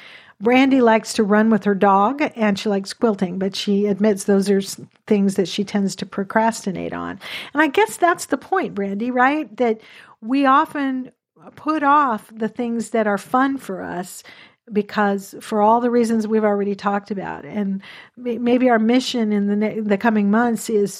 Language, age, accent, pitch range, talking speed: English, 50-69, American, 205-245 Hz, 175 wpm